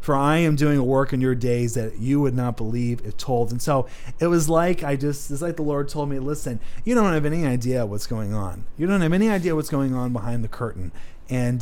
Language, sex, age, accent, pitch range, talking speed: English, male, 30-49, American, 125-160 Hz, 250 wpm